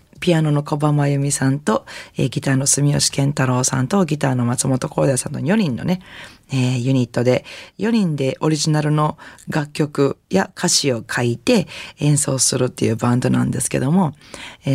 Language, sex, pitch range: Japanese, female, 135-170 Hz